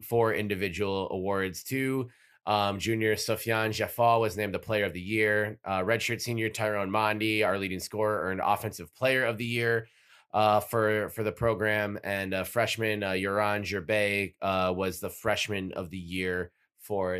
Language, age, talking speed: English, 30-49, 170 wpm